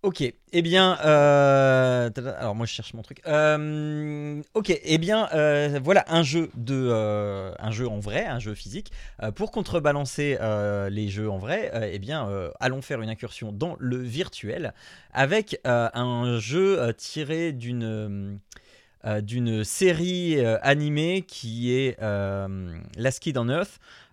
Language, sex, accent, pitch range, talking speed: French, male, French, 105-150 Hz, 165 wpm